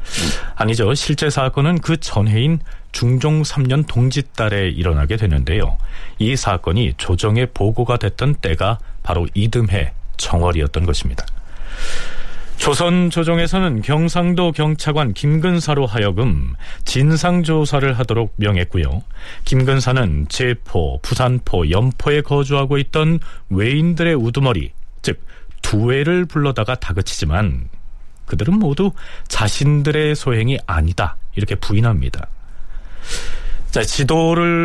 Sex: male